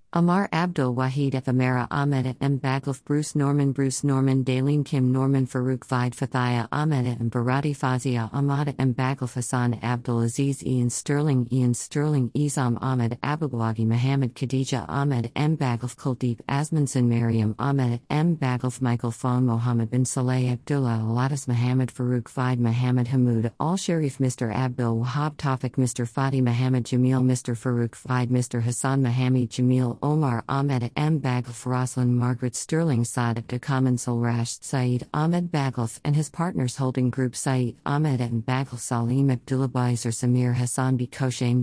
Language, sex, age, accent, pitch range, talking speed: English, female, 50-69, American, 125-145 Hz, 145 wpm